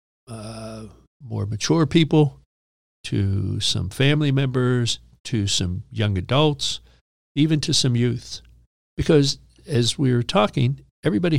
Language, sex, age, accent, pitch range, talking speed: English, male, 50-69, American, 110-150 Hz, 115 wpm